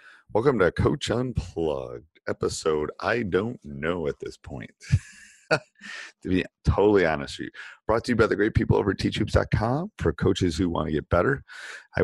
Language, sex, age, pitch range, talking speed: English, male, 30-49, 75-95 Hz, 175 wpm